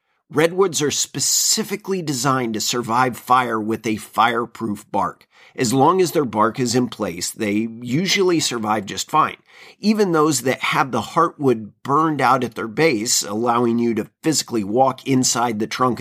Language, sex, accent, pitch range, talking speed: English, male, American, 115-155 Hz, 160 wpm